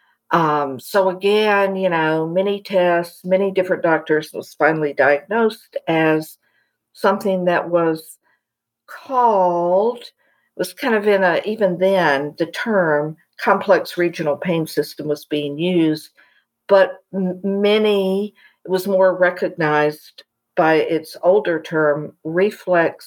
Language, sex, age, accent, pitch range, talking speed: English, female, 60-79, American, 160-205 Hz, 115 wpm